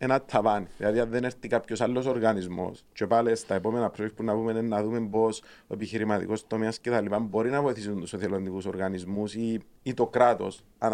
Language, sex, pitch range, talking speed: Greek, male, 105-130 Hz, 190 wpm